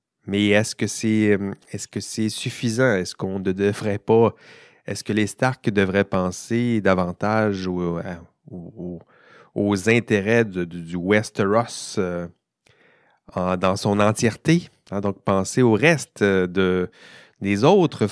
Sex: male